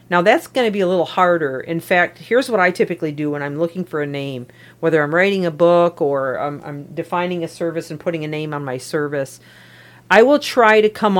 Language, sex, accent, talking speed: English, female, American, 235 wpm